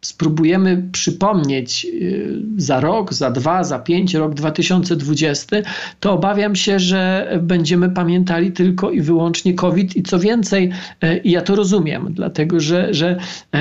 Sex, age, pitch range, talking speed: male, 40-59, 150-180 Hz, 130 wpm